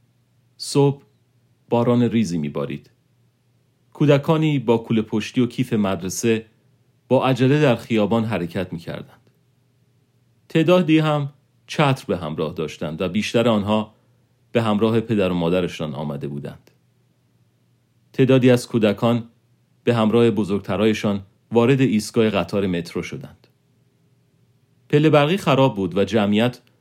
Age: 40-59